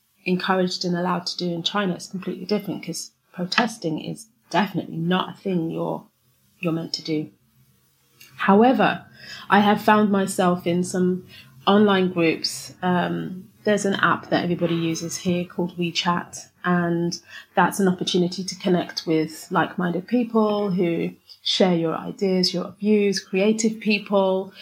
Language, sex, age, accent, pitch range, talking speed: English, female, 30-49, British, 175-195 Hz, 145 wpm